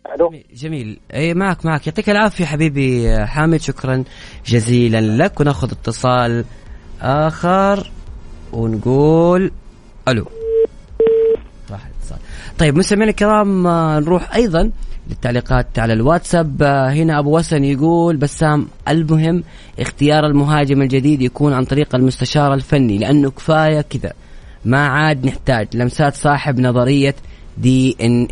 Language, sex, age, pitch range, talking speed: Arabic, female, 30-49, 120-160 Hz, 110 wpm